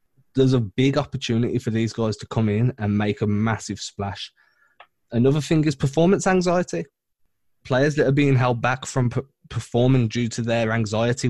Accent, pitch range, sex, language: British, 115-140 Hz, male, English